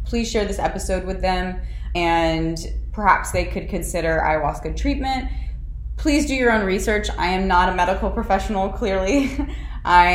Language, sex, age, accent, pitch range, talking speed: English, female, 20-39, American, 155-190 Hz, 155 wpm